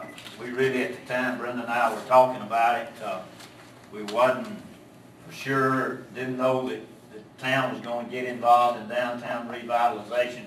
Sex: male